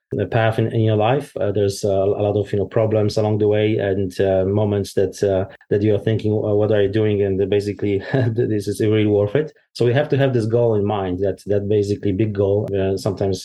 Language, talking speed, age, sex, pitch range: English, 235 wpm, 30-49, male, 100-115 Hz